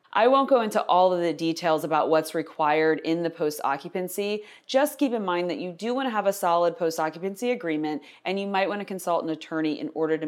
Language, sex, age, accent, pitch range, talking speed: English, female, 20-39, American, 160-210 Hz, 240 wpm